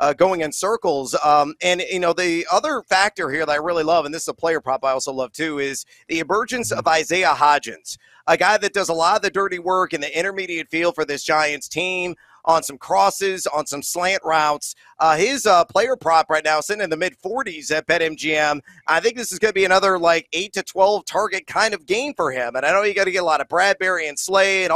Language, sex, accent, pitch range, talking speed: English, male, American, 150-185 Hz, 245 wpm